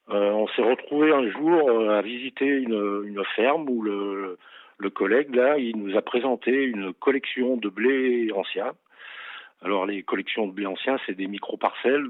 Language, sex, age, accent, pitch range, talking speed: French, male, 50-69, French, 100-120 Hz, 180 wpm